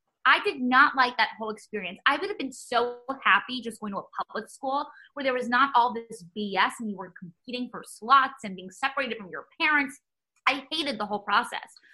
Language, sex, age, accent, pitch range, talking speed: English, female, 20-39, American, 205-270 Hz, 215 wpm